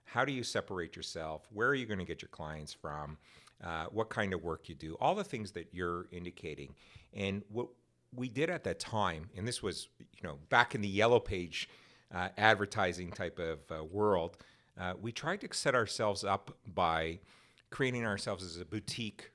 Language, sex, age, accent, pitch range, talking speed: English, male, 50-69, American, 85-110 Hz, 195 wpm